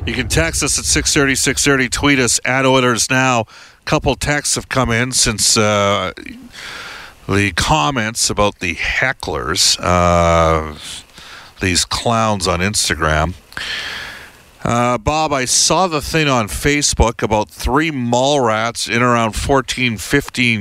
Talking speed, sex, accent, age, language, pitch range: 130 wpm, male, American, 50-69, English, 95-120 Hz